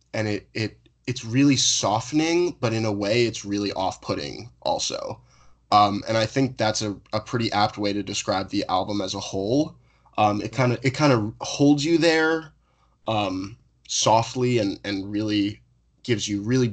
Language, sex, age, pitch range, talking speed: English, male, 10-29, 100-115 Hz, 175 wpm